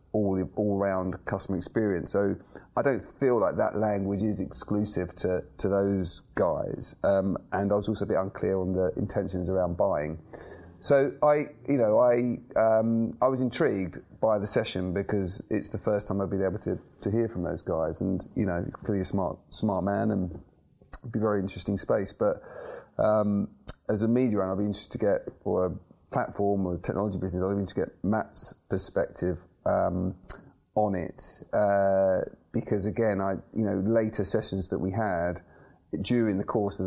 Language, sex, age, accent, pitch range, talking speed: English, male, 30-49, British, 90-105 Hz, 190 wpm